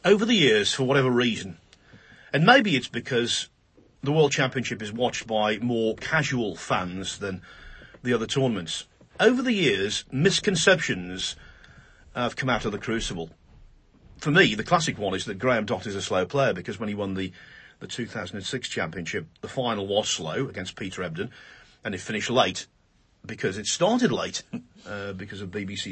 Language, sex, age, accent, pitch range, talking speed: English, male, 40-59, British, 105-145 Hz, 170 wpm